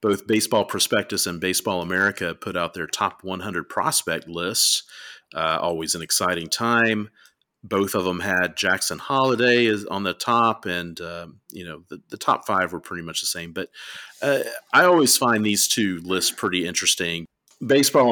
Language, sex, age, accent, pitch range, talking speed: English, male, 40-59, American, 85-110 Hz, 170 wpm